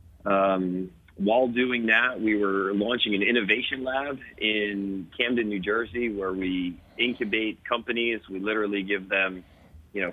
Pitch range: 95-110 Hz